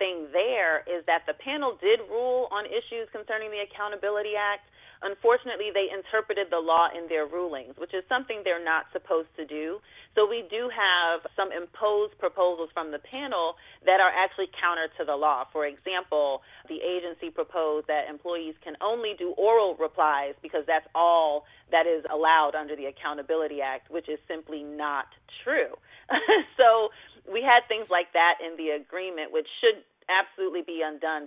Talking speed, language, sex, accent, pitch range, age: 170 wpm, English, female, American, 160-210 Hz, 30-49